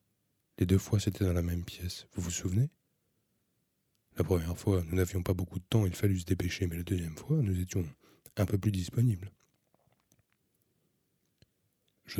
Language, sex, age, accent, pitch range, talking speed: French, male, 20-39, French, 85-100 Hz, 170 wpm